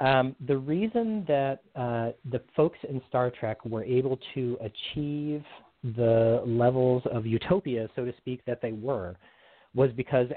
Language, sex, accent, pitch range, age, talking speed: English, male, American, 115-140 Hz, 40-59, 150 wpm